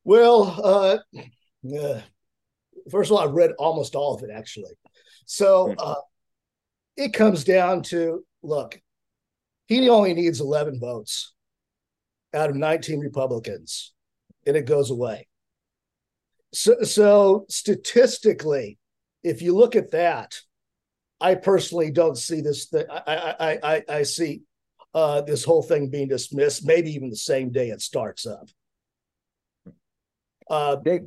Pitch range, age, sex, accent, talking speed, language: 145-195 Hz, 50-69, male, American, 130 wpm, English